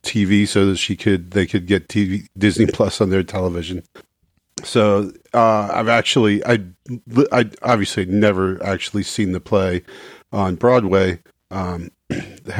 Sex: male